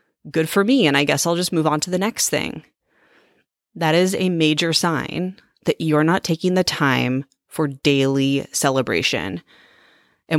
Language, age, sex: English, 30-49, female